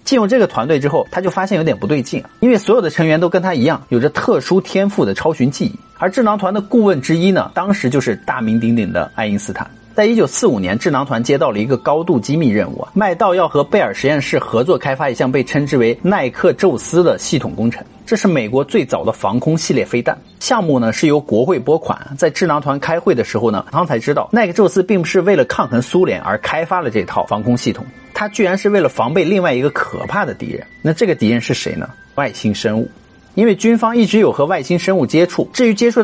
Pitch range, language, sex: 145-210 Hz, Chinese, male